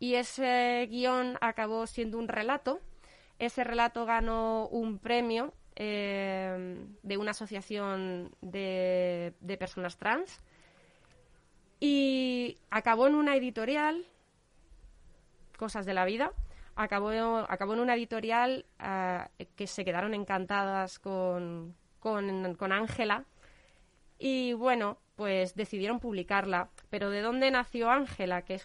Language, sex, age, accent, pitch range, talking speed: Spanish, female, 20-39, Spanish, 190-230 Hz, 115 wpm